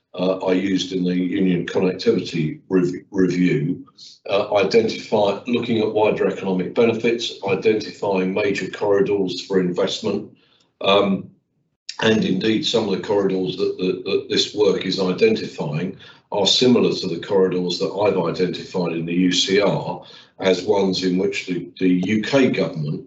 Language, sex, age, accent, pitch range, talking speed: English, male, 50-69, British, 90-110 Hz, 135 wpm